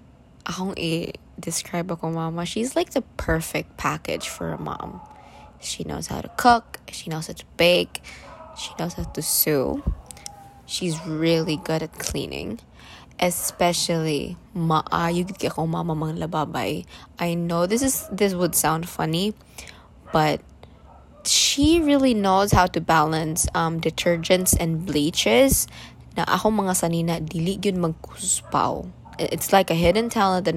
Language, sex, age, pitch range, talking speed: English, female, 20-39, 155-185 Hz, 125 wpm